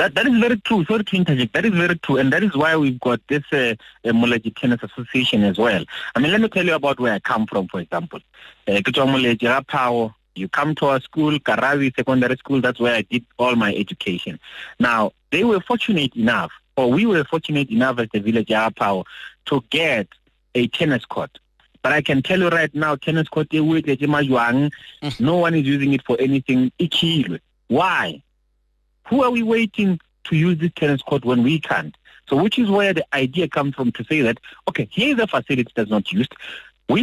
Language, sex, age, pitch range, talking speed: English, male, 30-49, 125-180 Hz, 195 wpm